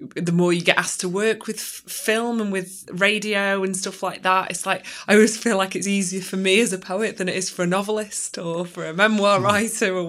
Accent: British